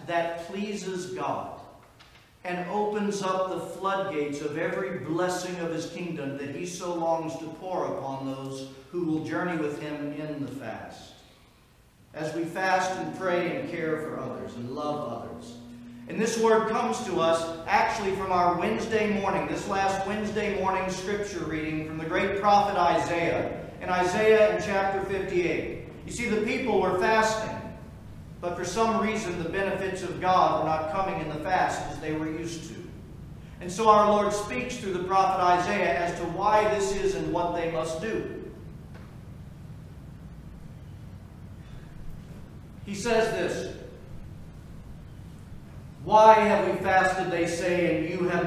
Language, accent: English, American